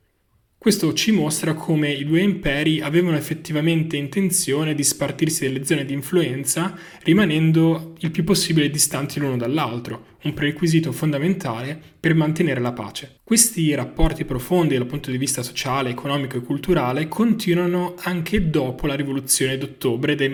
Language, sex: Italian, male